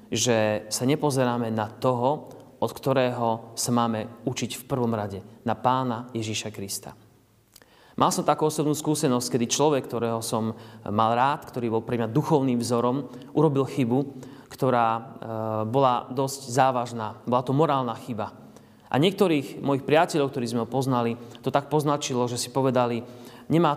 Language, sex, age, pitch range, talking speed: Slovak, male, 30-49, 115-140 Hz, 150 wpm